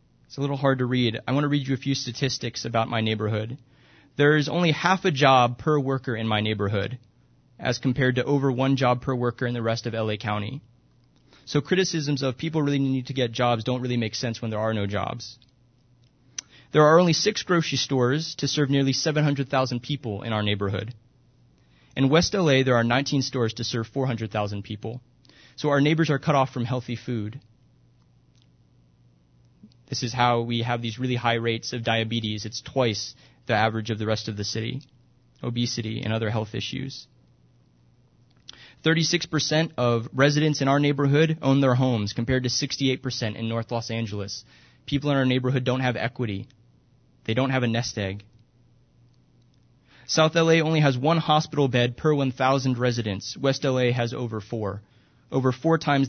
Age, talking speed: 20-39, 180 wpm